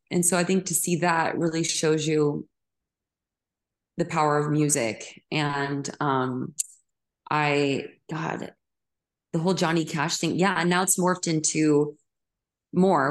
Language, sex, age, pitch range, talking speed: English, female, 20-39, 145-180 Hz, 135 wpm